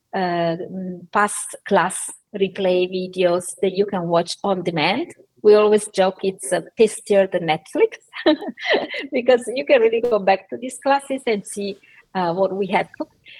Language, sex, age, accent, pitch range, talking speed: English, female, 30-49, Italian, 180-230 Hz, 155 wpm